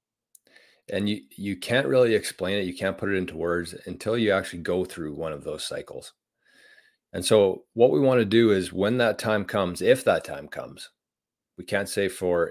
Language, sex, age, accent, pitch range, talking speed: English, male, 30-49, American, 90-120 Hz, 200 wpm